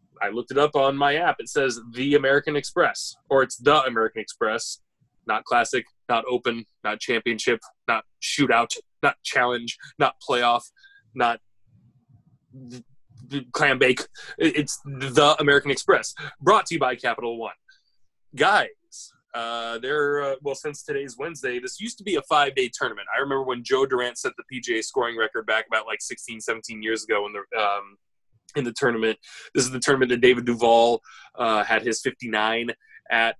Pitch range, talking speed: 115-145 Hz, 170 wpm